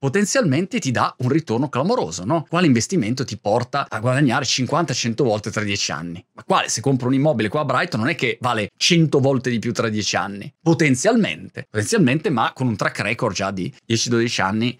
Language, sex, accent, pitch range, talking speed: Italian, male, native, 125-170 Hz, 200 wpm